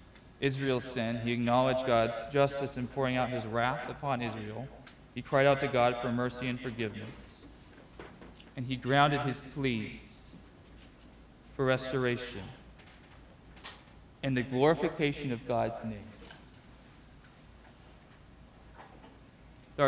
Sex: male